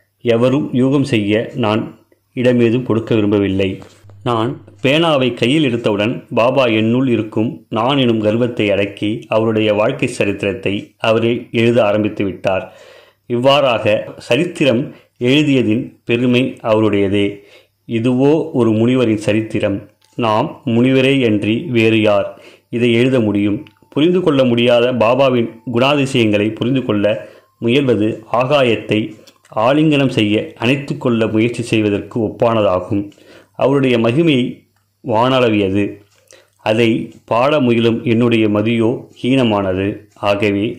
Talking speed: 100 wpm